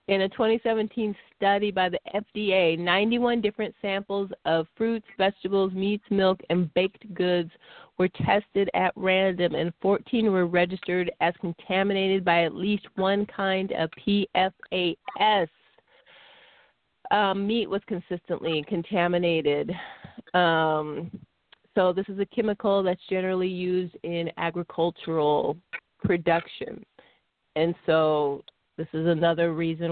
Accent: American